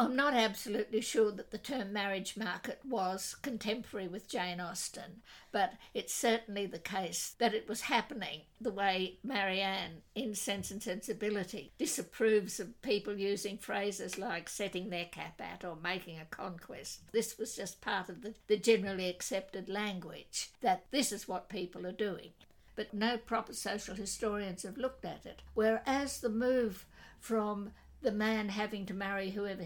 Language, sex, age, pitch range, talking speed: English, female, 60-79, 195-225 Hz, 160 wpm